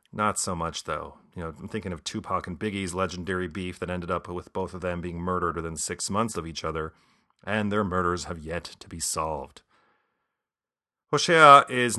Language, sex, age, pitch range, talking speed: English, male, 40-59, 90-115 Hz, 195 wpm